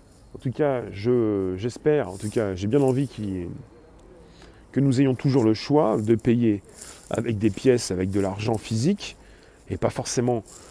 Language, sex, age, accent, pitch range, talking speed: French, male, 30-49, French, 115-150 Hz, 175 wpm